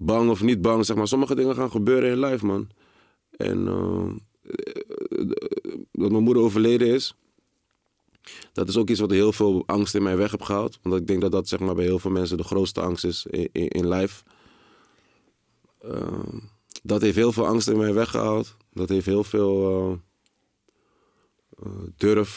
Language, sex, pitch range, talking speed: Dutch, male, 90-105 Hz, 190 wpm